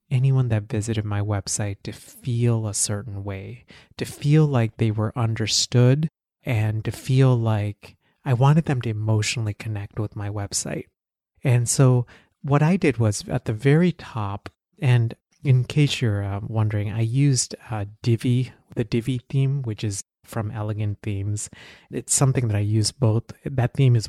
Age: 30-49